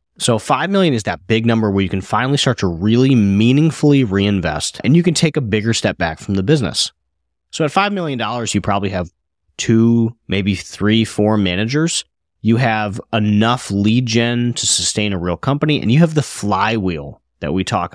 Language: English